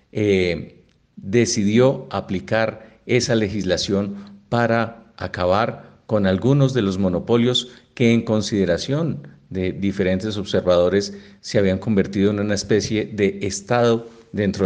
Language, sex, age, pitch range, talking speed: Spanish, male, 50-69, 100-125 Hz, 110 wpm